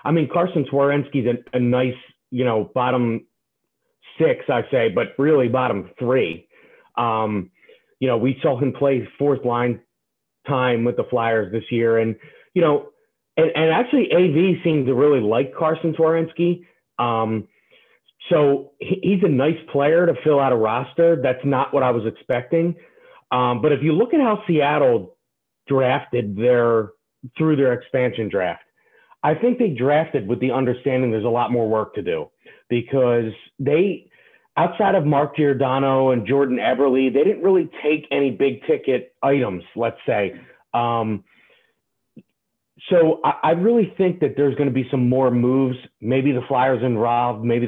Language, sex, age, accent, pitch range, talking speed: English, male, 40-59, American, 120-165 Hz, 160 wpm